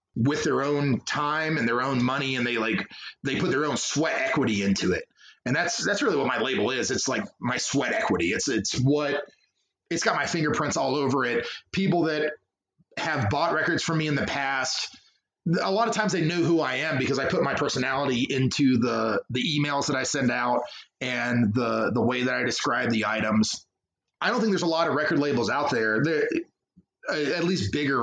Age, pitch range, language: 30-49, 120-160 Hz, English